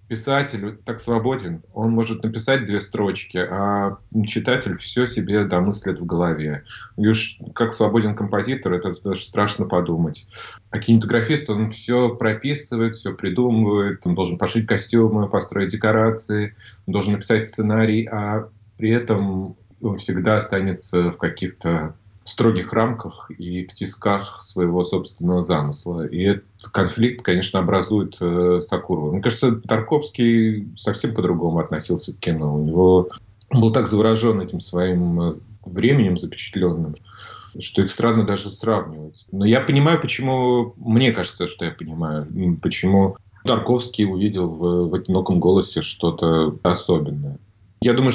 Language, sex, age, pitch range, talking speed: Russian, male, 30-49, 85-115 Hz, 135 wpm